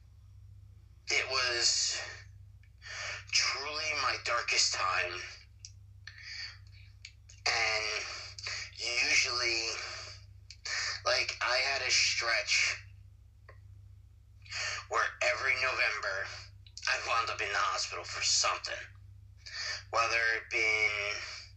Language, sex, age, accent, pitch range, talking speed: English, male, 30-49, American, 95-110 Hz, 75 wpm